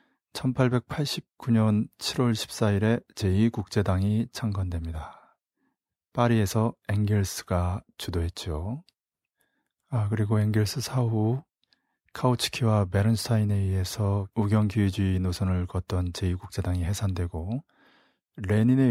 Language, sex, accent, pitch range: Korean, male, native, 95-120 Hz